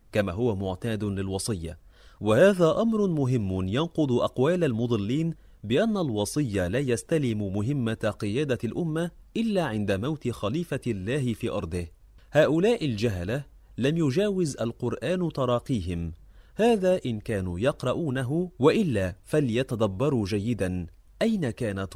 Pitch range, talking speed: 100-150 Hz, 105 wpm